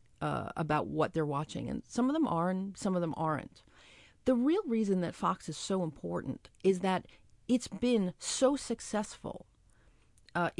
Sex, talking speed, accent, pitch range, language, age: female, 170 wpm, American, 170-235 Hz, English, 40-59